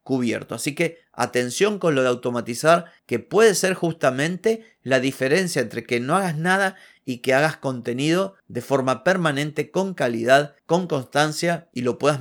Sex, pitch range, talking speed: male, 125-155 Hz, 160 wpm